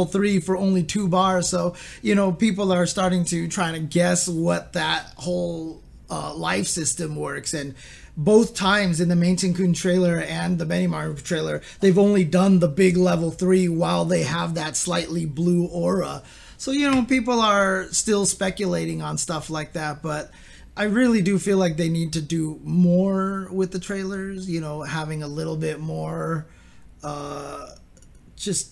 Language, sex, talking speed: English, male, 170 wpm